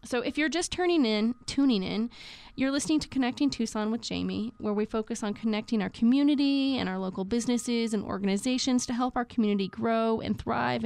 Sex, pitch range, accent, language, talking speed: female, 215-265 Hz, American, English, 195 wpm